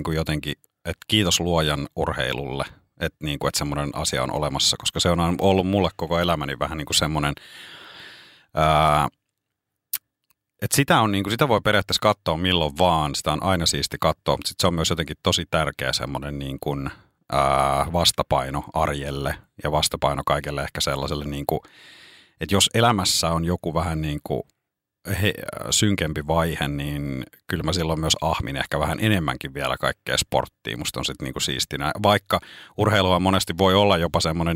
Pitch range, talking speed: 75-95 Hz, 140 wpm